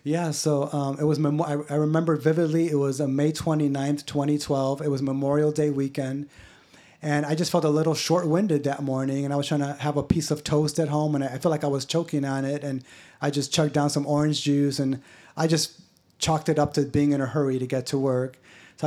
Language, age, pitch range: English, 30-49, 140-155 Hz